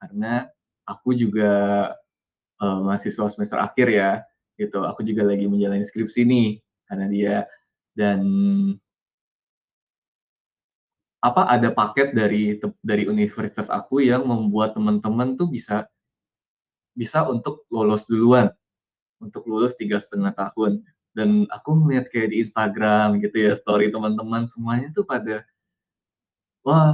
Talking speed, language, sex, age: 120 wpm, Indonesian, male, 20-39